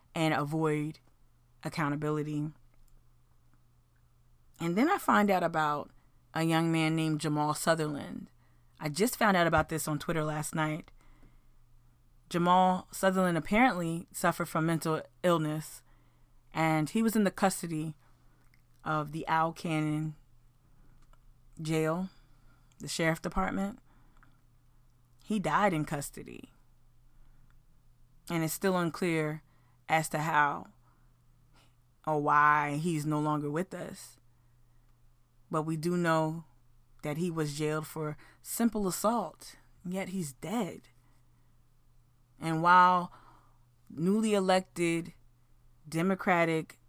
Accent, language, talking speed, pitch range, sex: American, English, 105 wpm, 125-170 Hz, female